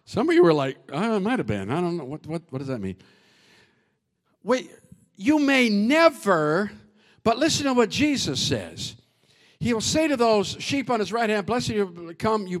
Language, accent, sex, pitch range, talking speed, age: English, American, male, 170-255 Hz, 210 wpm, 50-69